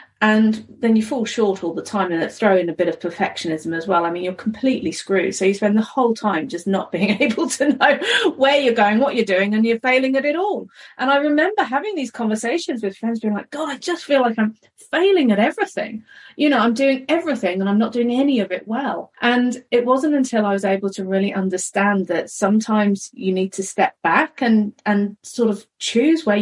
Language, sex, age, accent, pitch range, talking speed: English, female, 30-49, British, 185-240 Hz, 230 wpm